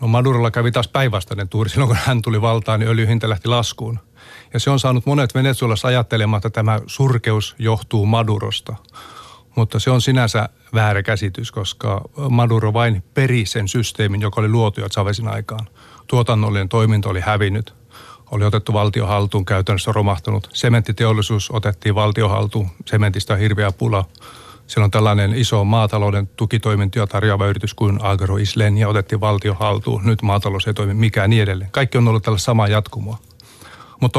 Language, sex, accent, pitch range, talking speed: Finnish, male, native, 105-120 Hz, 155 wpm